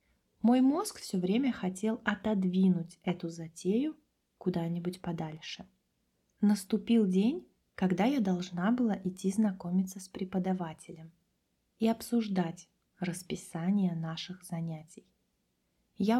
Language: Russian